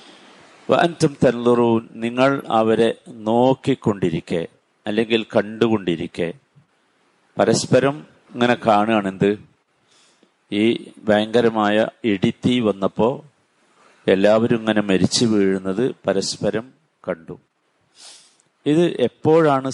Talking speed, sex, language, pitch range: 65 wpm, male, Malayalam, 105-130 Hz